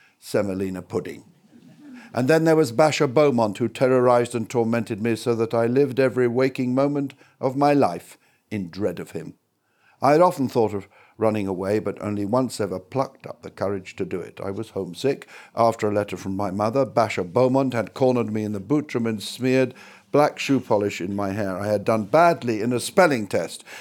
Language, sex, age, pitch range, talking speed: English, male, 60-79, 110-140 Hz, 195 wpm